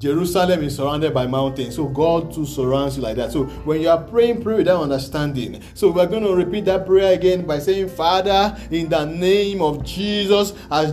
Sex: male